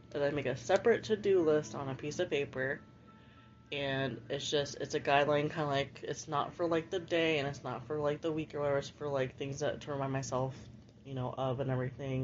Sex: female